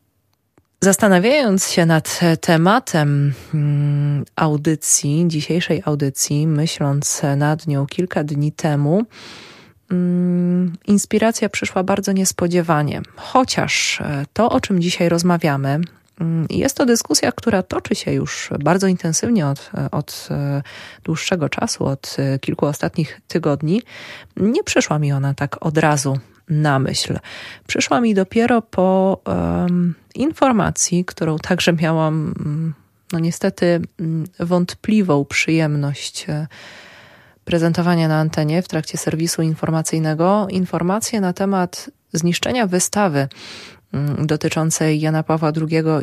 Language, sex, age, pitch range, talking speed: Polish, female, 20-39, 150-185 Hz, 100 wpm